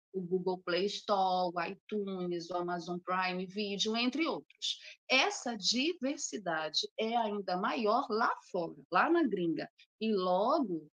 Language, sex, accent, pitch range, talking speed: Portuguese, female, Brazilian, 175-230 Hz, 130 wpm